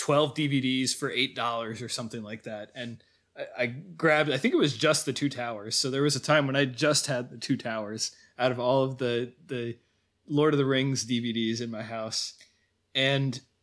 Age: 20-39